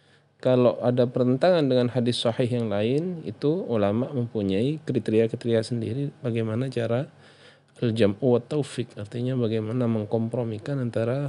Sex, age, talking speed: male, 20-39, 115 wpm